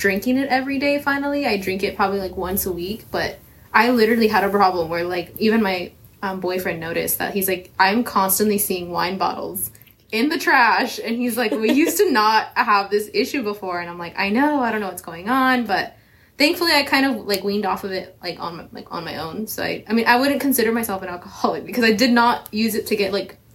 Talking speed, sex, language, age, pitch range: 240 wpm, female, English, 20-39, 190-235 Hz